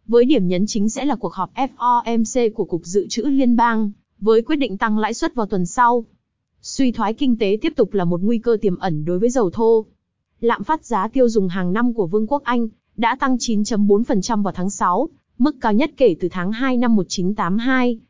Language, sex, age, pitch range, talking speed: Vietnamese, female, 20-39, 205-250 Hz, 220 wpm